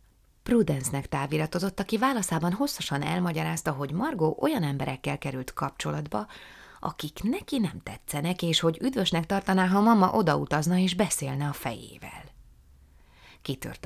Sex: female